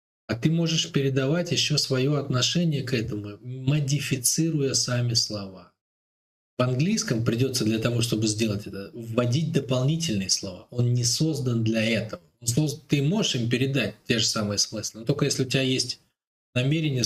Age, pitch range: 20-39, 105-135 Hz